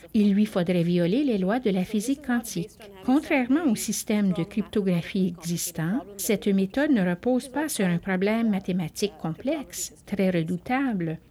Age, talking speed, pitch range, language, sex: 60-79, 150 wpm, 175-240 Hz, French, female